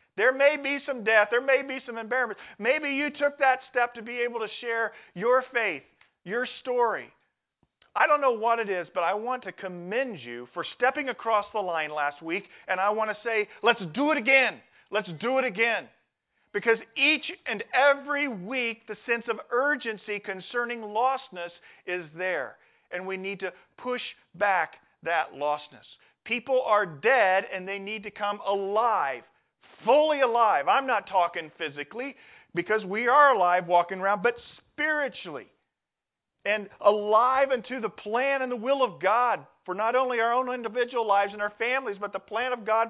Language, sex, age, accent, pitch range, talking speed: English, male, 40-59, American, 200-255 Hz, 175 wpm